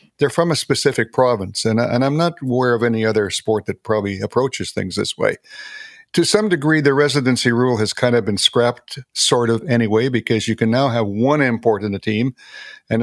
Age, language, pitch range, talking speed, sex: 50-69, English, 110-140 Hz, 205 wpm, male